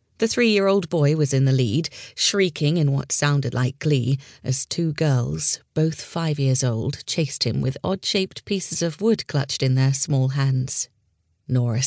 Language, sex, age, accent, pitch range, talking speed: English, female, 30-49, British, 130-155 Hz, 165 wpm